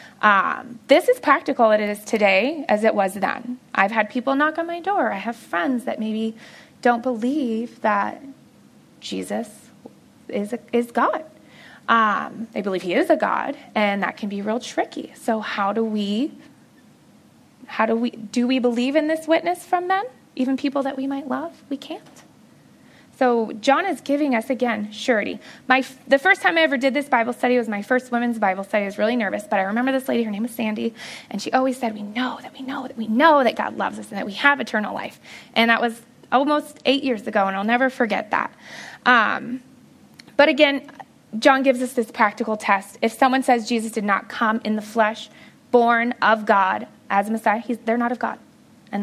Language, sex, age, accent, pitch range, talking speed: English, female, 20-39, American, 220-270 Hz, 200 wpm